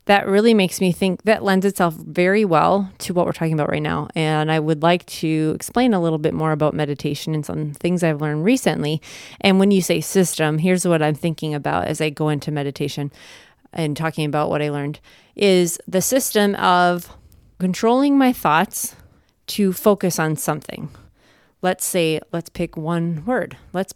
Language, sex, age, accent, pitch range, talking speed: English, female, 30-49, American, 155-195 Hz, 185 wpm